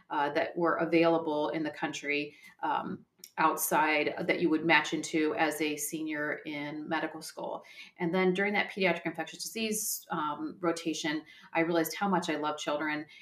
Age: 40-59